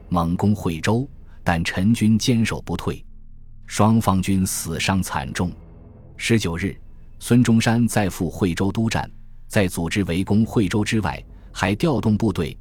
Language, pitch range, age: Chinese, 85-115 Hz, 20-39